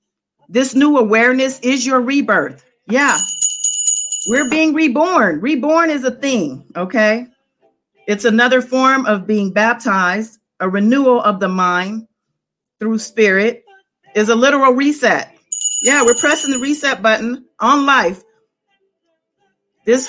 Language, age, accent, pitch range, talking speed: English, 40-59, American, 220-280 Hz, 120 wpm